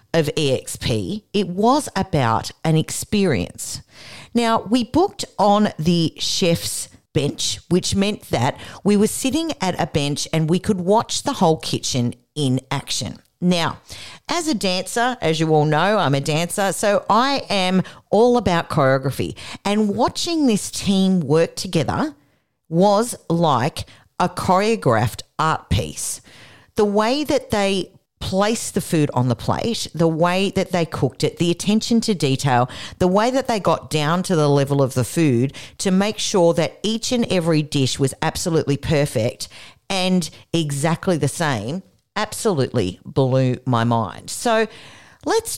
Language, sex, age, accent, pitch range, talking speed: English, female, 50-69, Australian, 140-205 Hz, 150 wpm